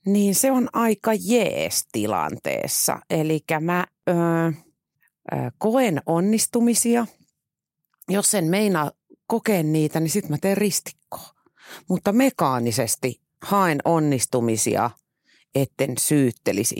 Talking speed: 95 wpm